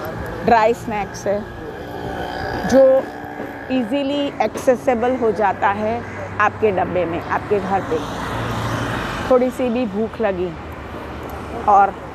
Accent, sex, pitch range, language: native, female, 200-260 Hz, Hindi